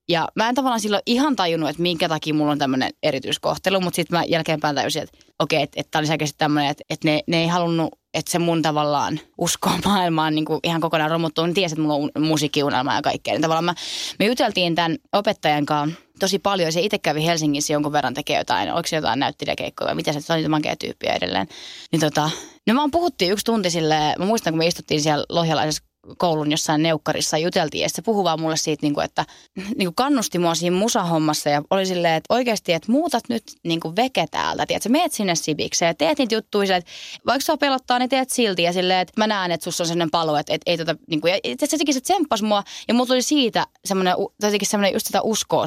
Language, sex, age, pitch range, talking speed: Finnish, female, 20-39, 155-220 Hz, 215 wpm